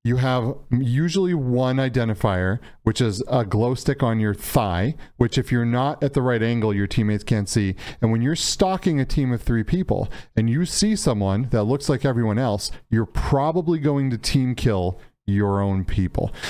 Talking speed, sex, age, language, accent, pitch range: 190 wpm, male, 40-59, English, American, 110-140 Hz